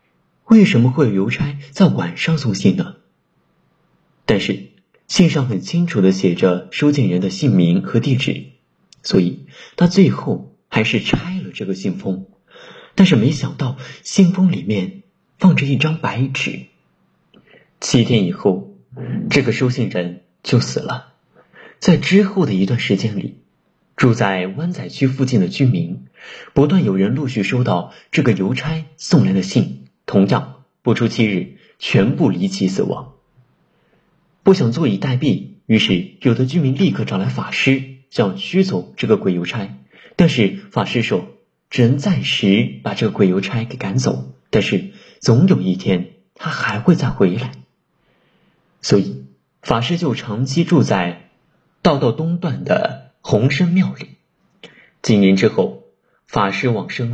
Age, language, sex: 50-69, Chinese, male